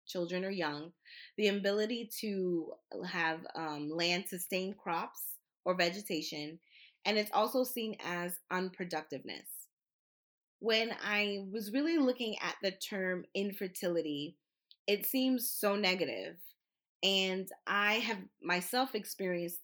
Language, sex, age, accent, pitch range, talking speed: English, female, 20-39, American, 165-200 Hz, 115 wpm